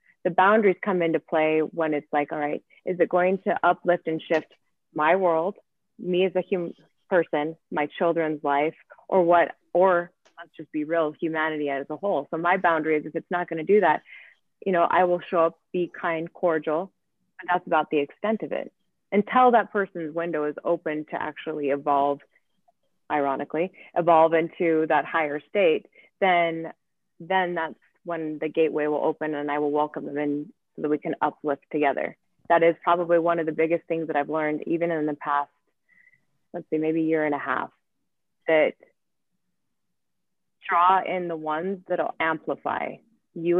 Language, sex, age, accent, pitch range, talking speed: English, female, 30-49, American, 150-175 Hz, 180 wpm